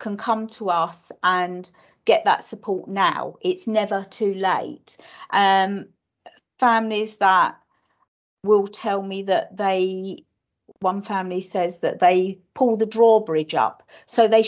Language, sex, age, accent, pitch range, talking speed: English, female, 40-59, British, 175-220 Hz, 135 wpm